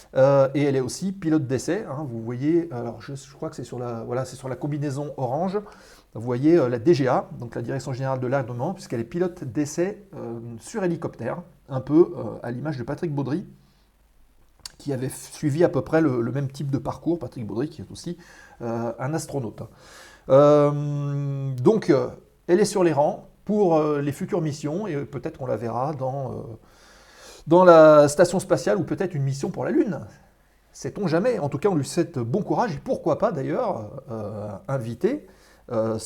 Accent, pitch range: French, 130-175 Hz